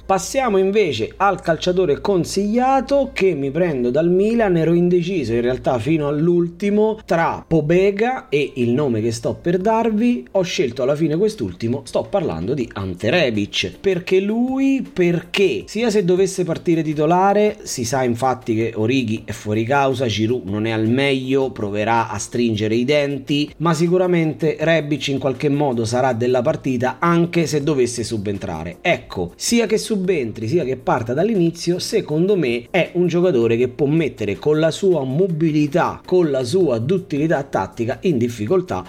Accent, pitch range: native, 125-190 Hz